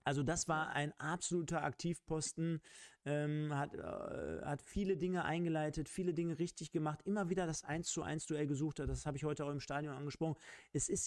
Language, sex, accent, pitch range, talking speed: German, male, German, 130-160 Hz, 180 wpm